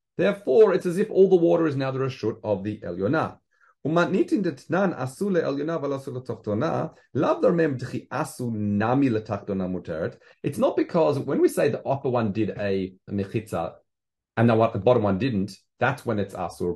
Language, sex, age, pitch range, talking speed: English, male, 30-49, 105-160 Hz, 145 wpm